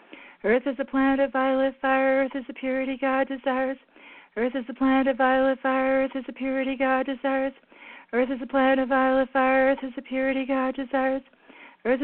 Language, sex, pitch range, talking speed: English, female, 245-275 Hz, 200 wpm